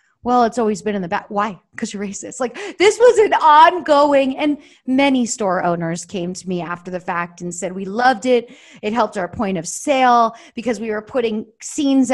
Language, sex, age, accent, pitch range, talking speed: English, female, 30-49, American, 200-250 Hz, 210 wpm